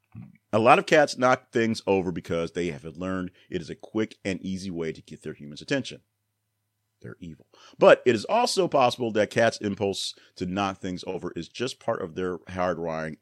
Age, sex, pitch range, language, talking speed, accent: 40-59, male, 90-115 Hz, English, 195 wpm, American